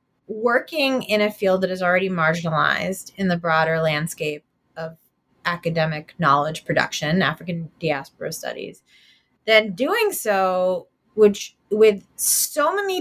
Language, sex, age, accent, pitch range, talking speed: English, female, 20-39, American, 180-240 Hz, 120 wpm